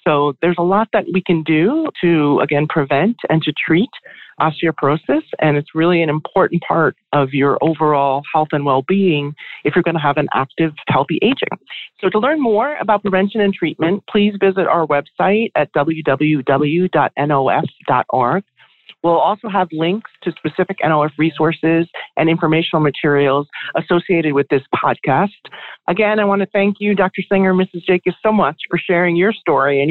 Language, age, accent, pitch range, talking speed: English, 40-59, American, 145-195 Hz, 165 wpm